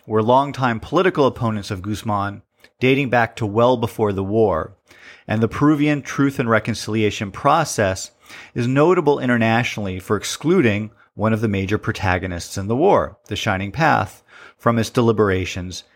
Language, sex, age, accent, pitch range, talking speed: English, male, 40-59, American, 95-120 Hz, 145 wpm